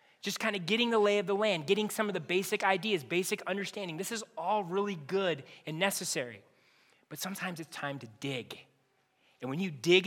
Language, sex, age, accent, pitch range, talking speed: English, male, 30-49, American, 165-210 Hz, 205 wpm